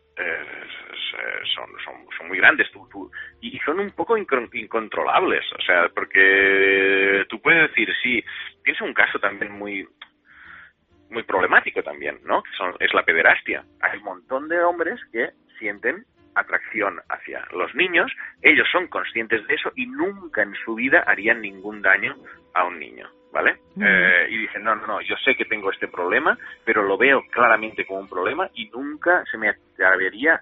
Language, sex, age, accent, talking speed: Spanish, male, 30-49, Spanish, 170 wpm